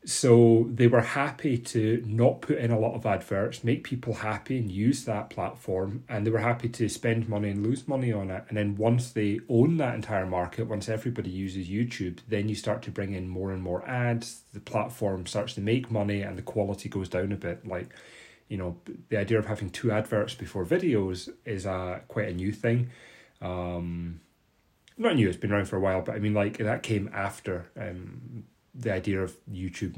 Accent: British